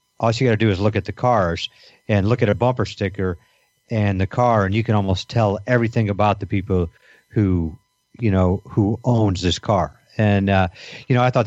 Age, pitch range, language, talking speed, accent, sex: 50-69, 95-115 Hz, English, 215 wpm, American, male